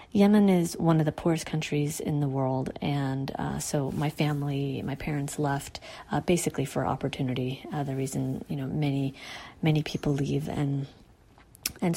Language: English